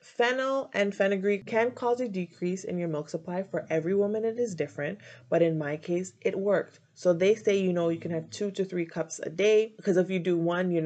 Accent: American